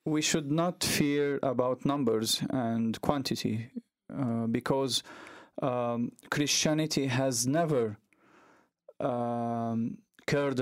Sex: male